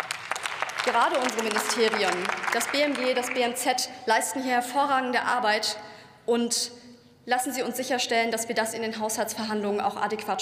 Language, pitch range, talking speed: German, 220-255 Hz, 140 wpm